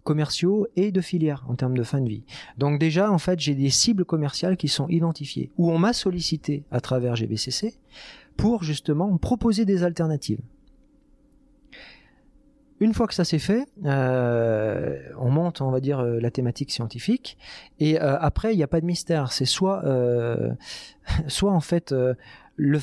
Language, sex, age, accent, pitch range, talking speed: French, male, 40-59, French, 130-185 Hz, 175 wpm